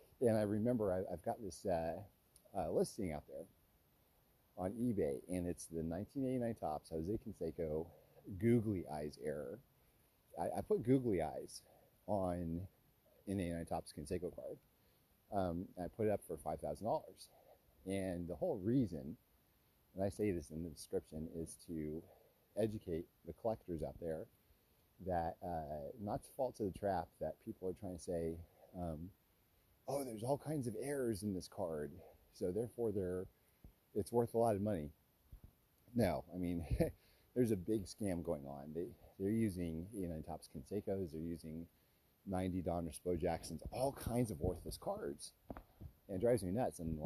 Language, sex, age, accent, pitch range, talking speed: English, male, 40-59, American, 85-110 Hz, 160 wpm